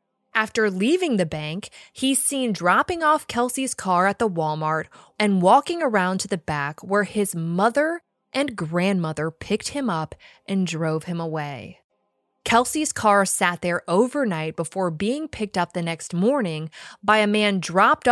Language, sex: English, female